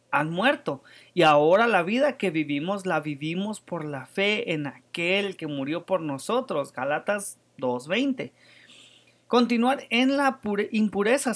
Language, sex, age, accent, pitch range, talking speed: English, male, 30-49, Mexican, 155-220 Hz, 130 wpm